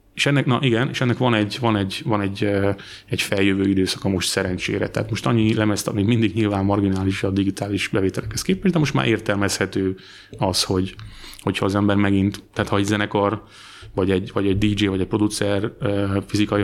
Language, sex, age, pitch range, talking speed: Hungarian, male, 30-49, 95-110 Hz, 185 wpm